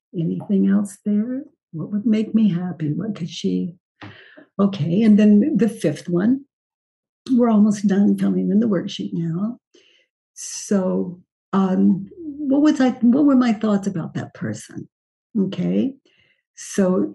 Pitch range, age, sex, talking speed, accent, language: 185-240 Hz, 60-79, female, 135 wpm, American, English